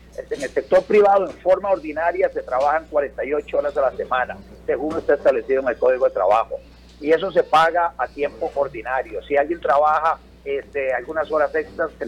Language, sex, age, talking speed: Spanish, male, 50-69, 180 wpm